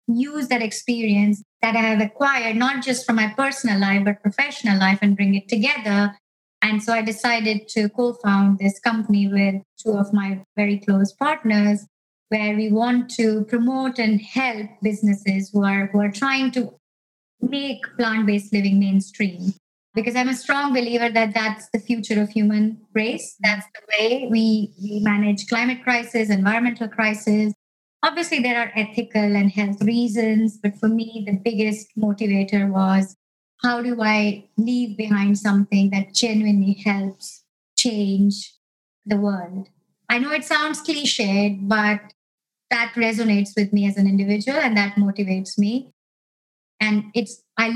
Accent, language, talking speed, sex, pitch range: Indian, English, 150 wpm, male, 205-235 Hz